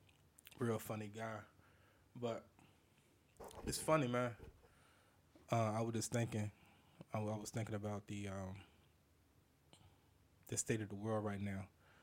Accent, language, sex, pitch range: American, English, male, 100-110 Hz